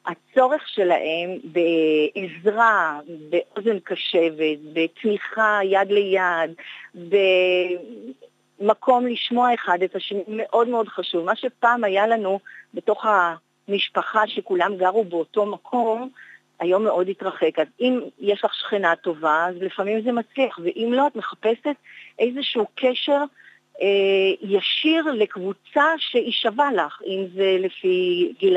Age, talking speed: 50-69, 115 wpm